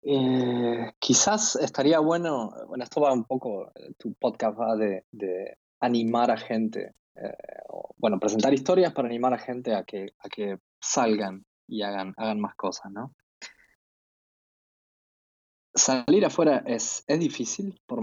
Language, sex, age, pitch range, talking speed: Spanish, male, 20-39, 105-130 Hz, 145 wpm